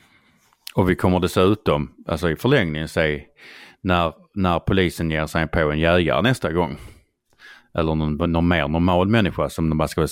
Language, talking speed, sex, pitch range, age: Swedish, 170 wpm, male, 80-120 Hz, 30-49